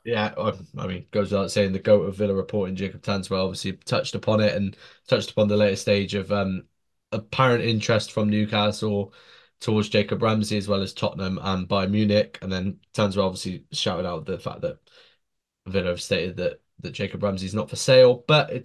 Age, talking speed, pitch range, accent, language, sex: 10-29, 195 wpm, 100-120 Hz, British, English, male